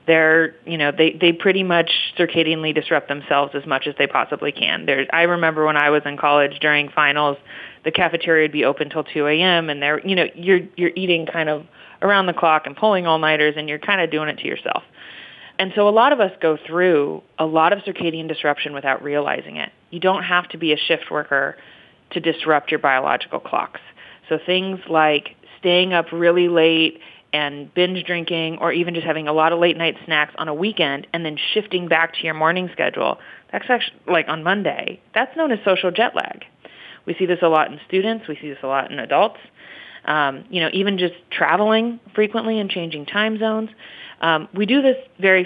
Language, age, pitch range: English, 30-49, 155-185 Hz